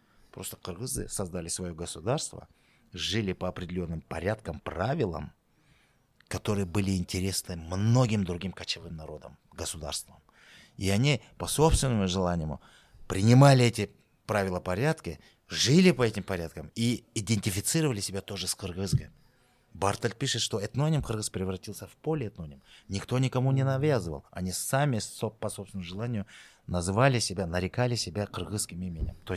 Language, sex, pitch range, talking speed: Russian, male, 95-125 Hz, 125 wpm